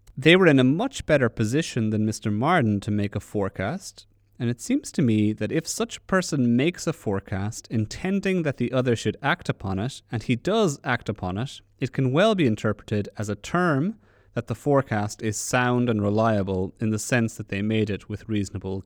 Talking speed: 205 wpm